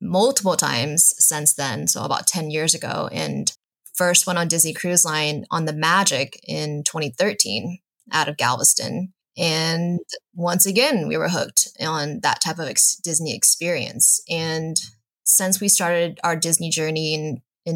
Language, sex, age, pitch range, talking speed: English, female, 20-39, 155-180 Hz, 150 wpm